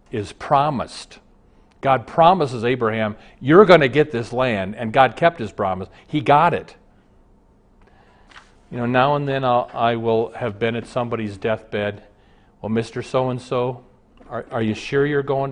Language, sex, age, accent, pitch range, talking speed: English, male, 40-59, American, 125-195 Hz, 165 wpm